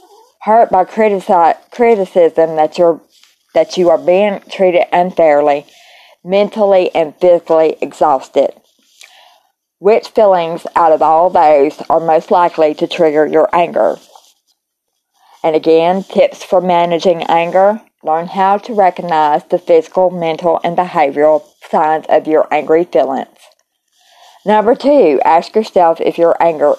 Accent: American